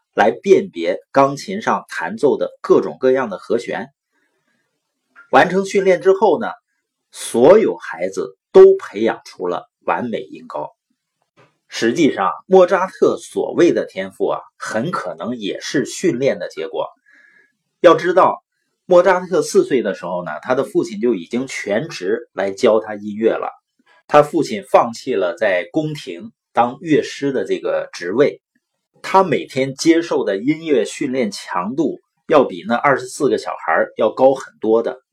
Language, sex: Chinese, male